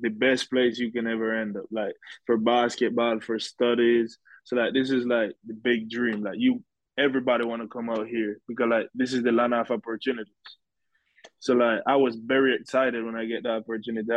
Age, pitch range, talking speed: 20-39, 110-120 Hz, 205 wpm